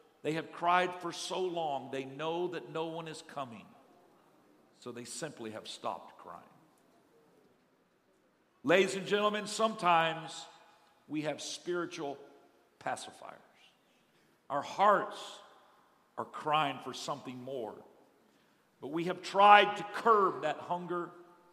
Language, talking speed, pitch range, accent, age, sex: English, 115 wpm, 165-260 Hz, American, 50-69, male